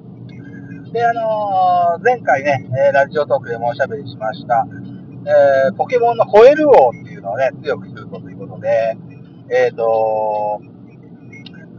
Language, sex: Japanese, male